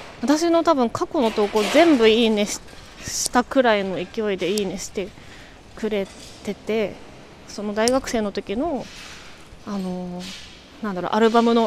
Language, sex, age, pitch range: Japanese, female, 20-39, 200-245 Hz